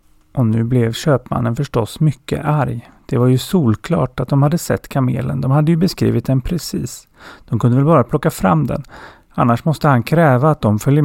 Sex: male